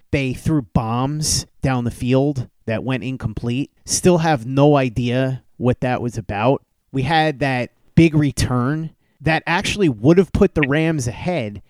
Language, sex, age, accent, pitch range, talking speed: English, male, 30-49, American, 115-140 Hz, 155 wpm